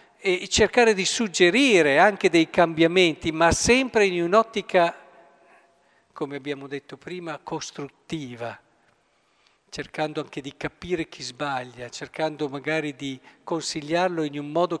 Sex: male